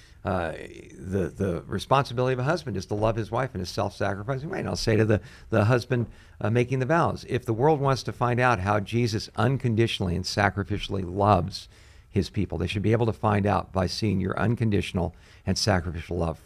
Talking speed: 205 wpm